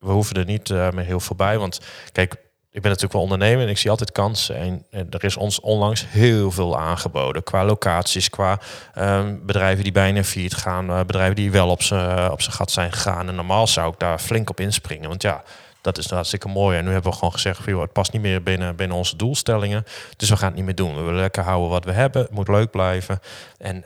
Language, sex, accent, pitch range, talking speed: Dutch, male, Dutch, 90-105 Hz, 235 wpm